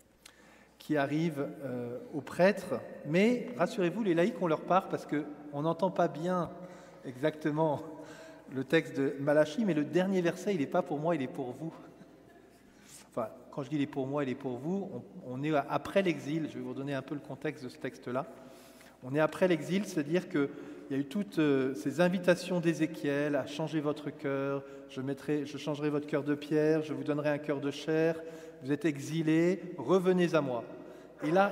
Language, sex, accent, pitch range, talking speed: French, male, French, 145-180 Hz, 190 wpm